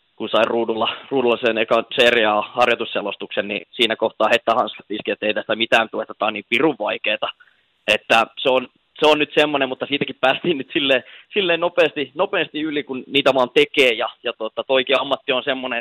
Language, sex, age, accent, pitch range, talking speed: Finnish, male, 20-39, native, 120-145 Hz, 185 wpm